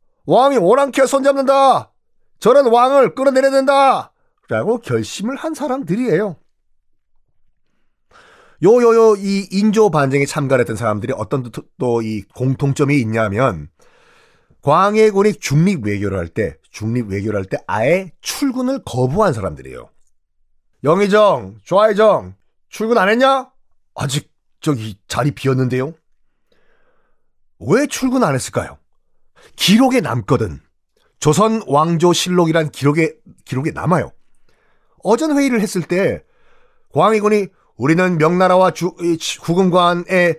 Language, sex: Korean, male